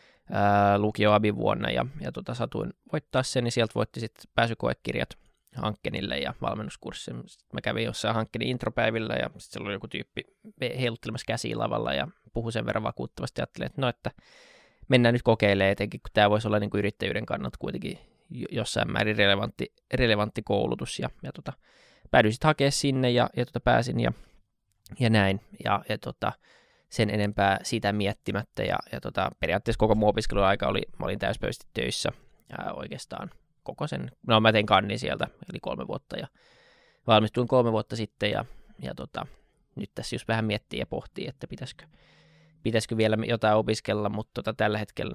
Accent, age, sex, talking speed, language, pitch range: native, 20-39, male, 155 wpm, Finnish, 100-120 Hz